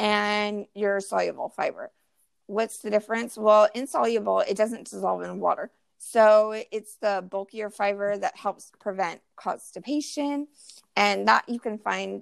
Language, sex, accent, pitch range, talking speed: English, female, American, 190-235 Hz, 135 wpm